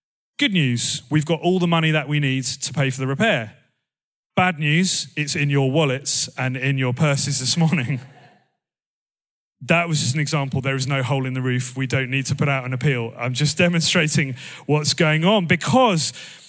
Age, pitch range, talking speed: 30-49, 135-170 Hz, 195 wpm